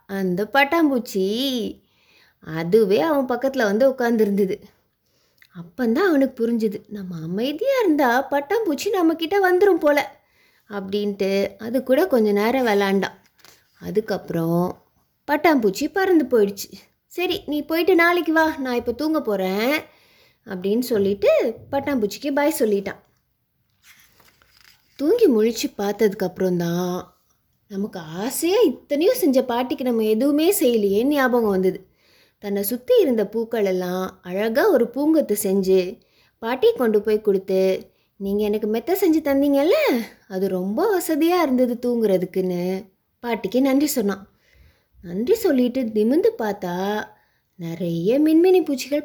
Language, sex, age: Tamil, female, 20-39